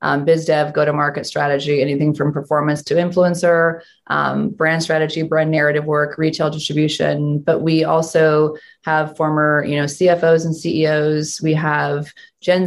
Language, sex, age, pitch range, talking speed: English, female, 30-49, 150-165 Hz, 145 wpm